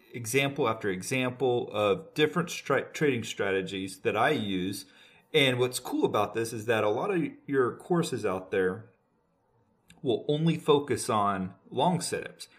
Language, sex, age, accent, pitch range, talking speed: English, male, 30-49, American, 115-160 Hz, 145 wpm